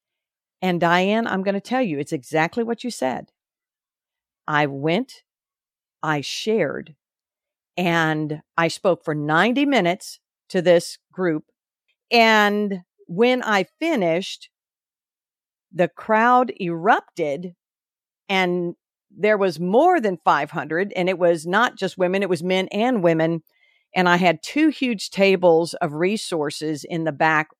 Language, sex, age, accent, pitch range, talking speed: English, female, 50-69, American, 165-225 Hz, 130 wpm